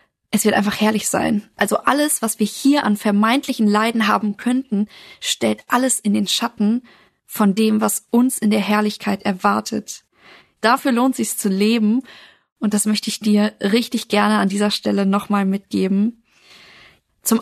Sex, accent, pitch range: female, German, 205-235 Hz